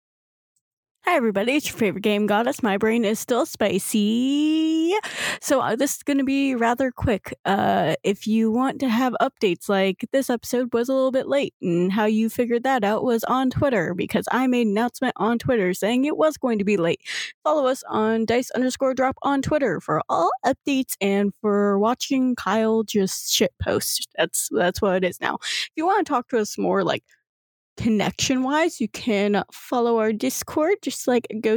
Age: 20-39